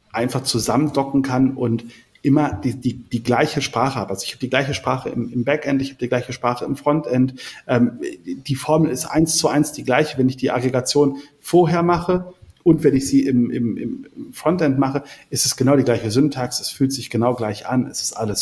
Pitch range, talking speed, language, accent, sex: 110-135 Hz, 215 wpm, German, German, male